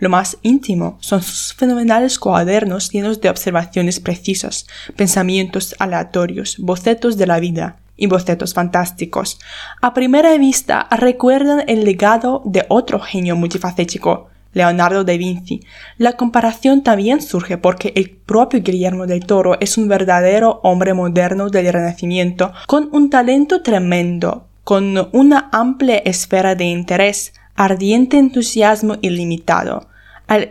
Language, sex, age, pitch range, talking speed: Spanish, female, 10-29, 185-240 Hz, 125 wpm